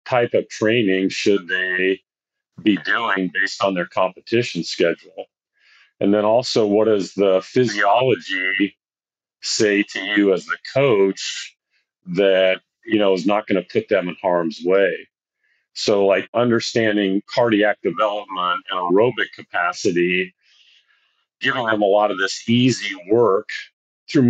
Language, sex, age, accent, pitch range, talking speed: English, male, 50-69, American, 95-115 Hz, 135 wpm